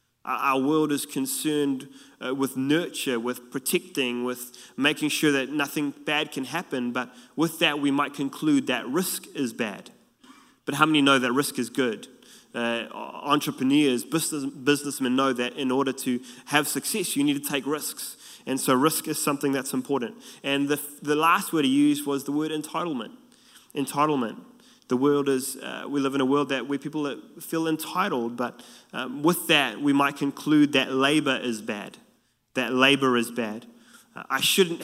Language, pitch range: English, 130-150 Hz